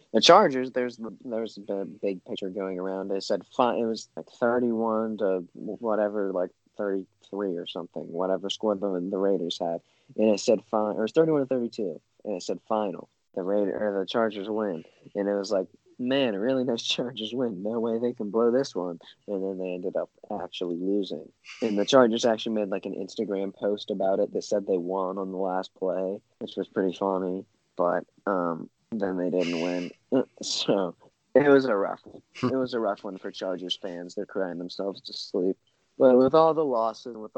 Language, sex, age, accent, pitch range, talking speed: English, male, 20-39, American, 95-120 Hz, 200 wpm